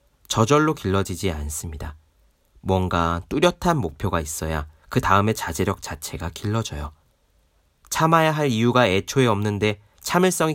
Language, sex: Korean, male